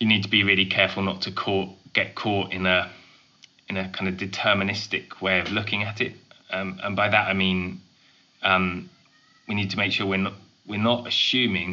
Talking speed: 205 wpm